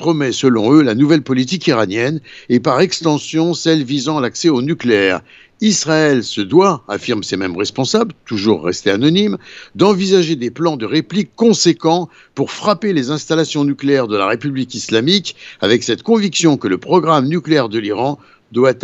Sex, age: male, 60-79